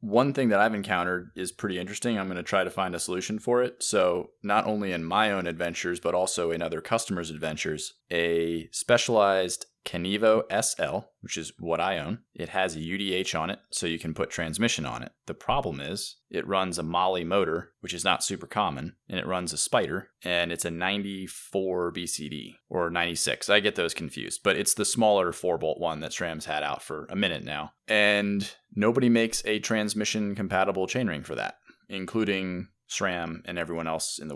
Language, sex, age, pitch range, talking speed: English, male, 30-49, 85-100 Hz, 195 wpm